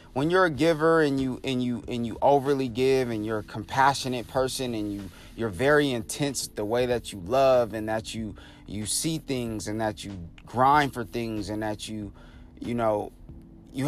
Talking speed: 195 wpm